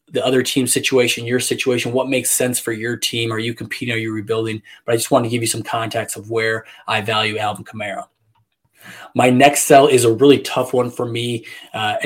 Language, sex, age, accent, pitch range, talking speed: English, male, 20-39, American, 115-125 Hz, 220 wpm